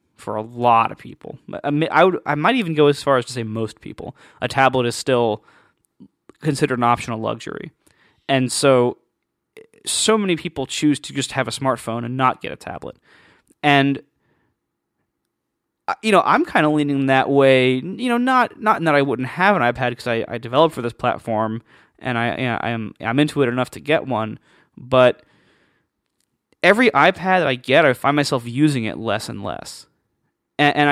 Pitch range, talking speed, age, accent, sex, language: 115-145 Hz, 185 wpm, 20-39, American, male, English